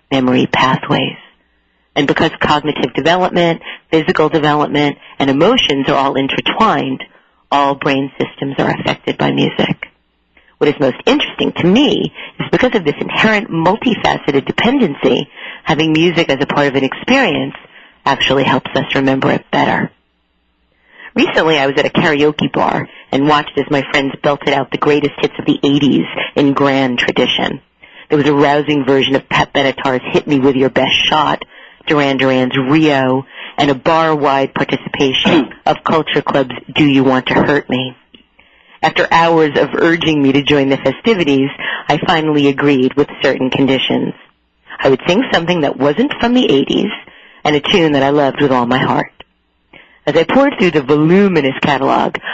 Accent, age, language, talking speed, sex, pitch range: American, 40-59, English, 160 wpm, female, 135-155 Hz